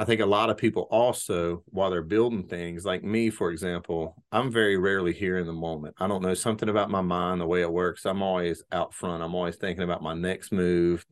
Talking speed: 235 wpm